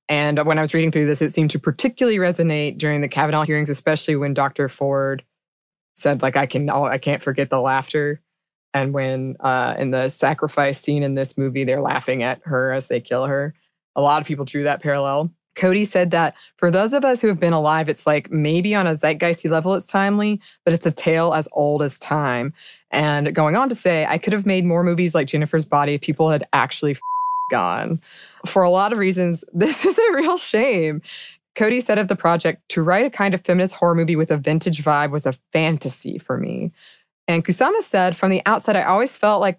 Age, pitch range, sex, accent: 20-39, 145-185 Hz, female, American